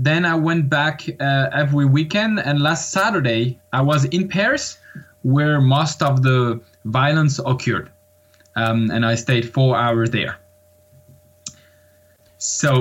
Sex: male